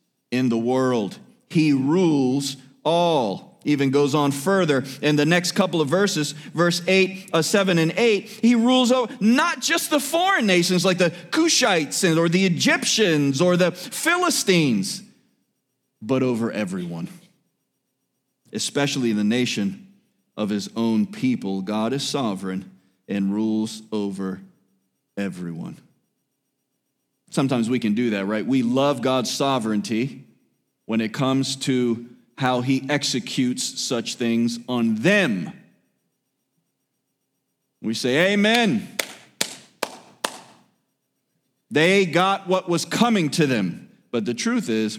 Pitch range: 125-200 Hz